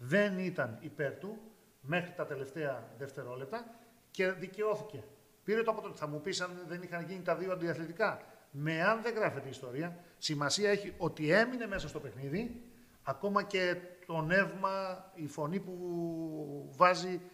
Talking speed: 160 wpm